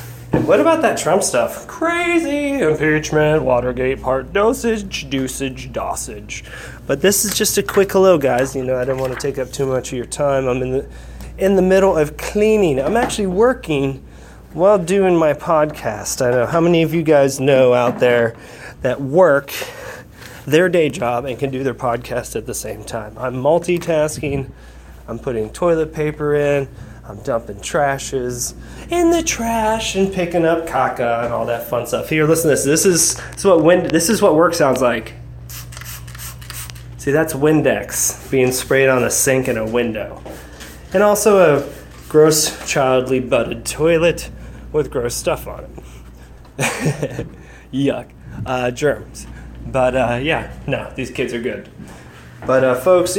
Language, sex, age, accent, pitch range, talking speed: English, male, 30-49, American, 120-165 Hz, 165 wpm